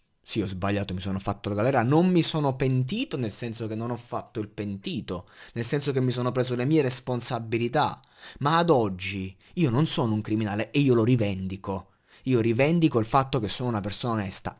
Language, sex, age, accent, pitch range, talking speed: Italian, male, 20-39, native, 105-150 Hz, 205 wpm